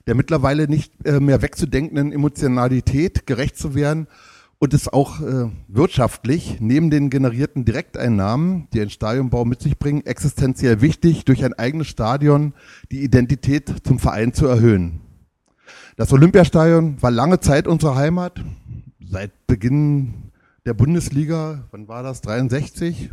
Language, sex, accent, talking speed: German, male, German, 130 wpm